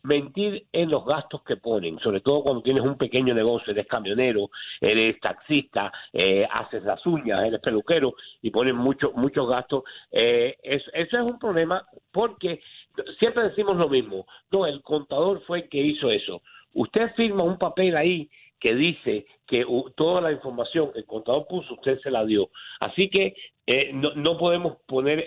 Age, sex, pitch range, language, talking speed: 60-79, male, 140-195 Hz, Spanish, 175 wpm